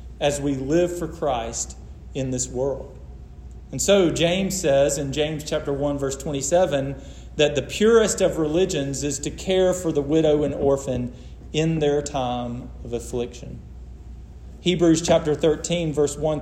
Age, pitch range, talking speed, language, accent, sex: 40-59, 120-165 Hz, 150 wpm, English, American, male